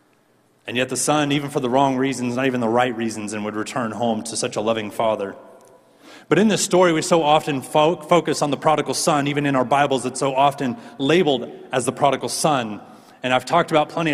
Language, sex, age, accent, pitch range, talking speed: English, male, 30-49, American, 115-155 Hz, 220 wpm